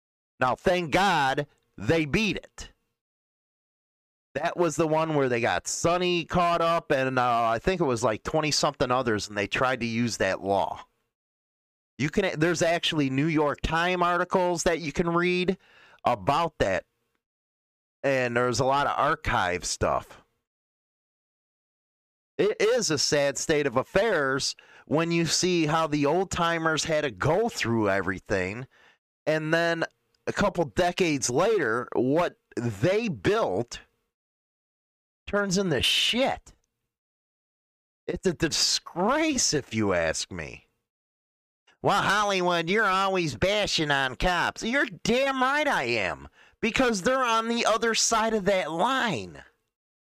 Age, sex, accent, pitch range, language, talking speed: 30-49, male, American, 130-185 Hz, English, 135 wpm